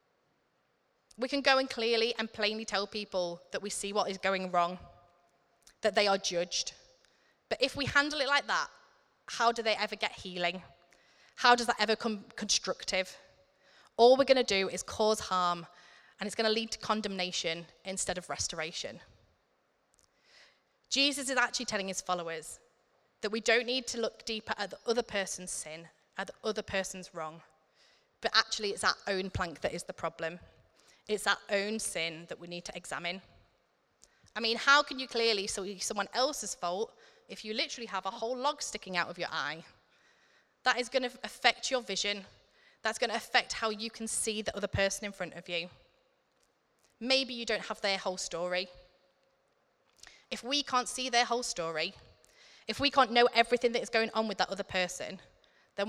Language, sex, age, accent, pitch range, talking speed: English, female, 20-39, British, 180-235 Hz, 180 wpm